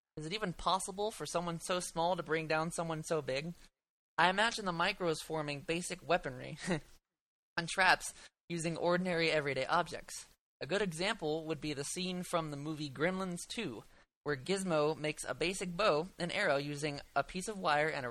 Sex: male